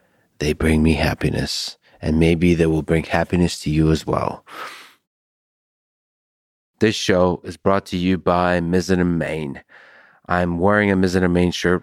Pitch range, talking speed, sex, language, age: 80-95 Hz, 155 wpm, male, English, 30-49